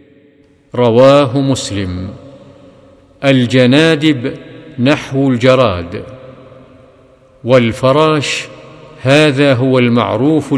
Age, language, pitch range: 50-69, Arabic, 125-150 Hz